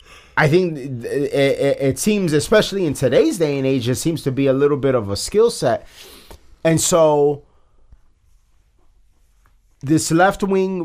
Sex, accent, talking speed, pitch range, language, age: male, American, 150 wpm, 115-160 Hz, English, 30-49